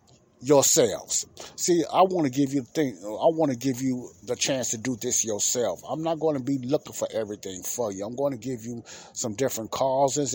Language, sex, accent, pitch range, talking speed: English, male, American, 105-140 Hz, 220 wpm